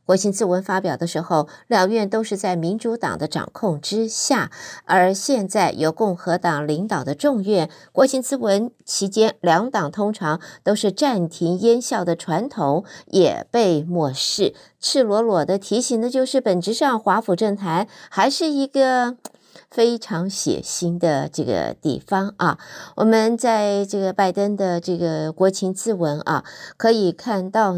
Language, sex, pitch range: Chinese, female, 175-230 Hz